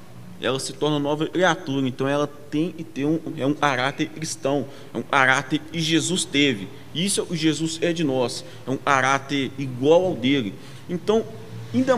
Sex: male